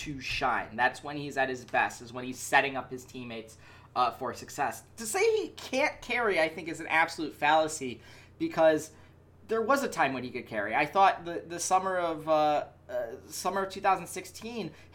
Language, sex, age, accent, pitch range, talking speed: English, male, 20-39, American, 135-200 Hz, 195 wpm